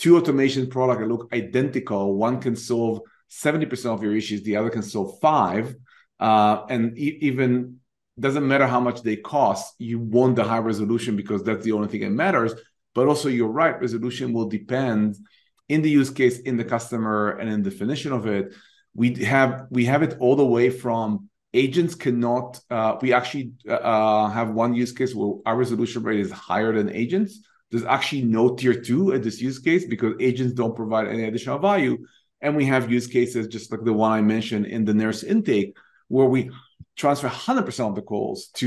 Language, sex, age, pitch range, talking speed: English, male, 30-49, 110-130 Hz, 195 wpm